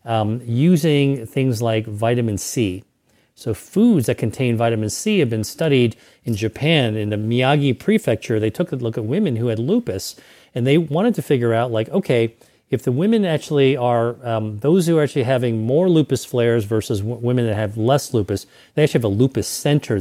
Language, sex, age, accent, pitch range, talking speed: English, male, 40-59, American, 110-140 Hz, 190 wpm